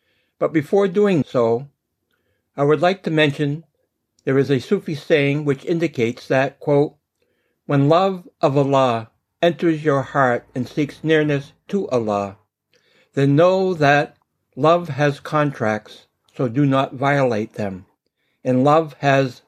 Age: 60-79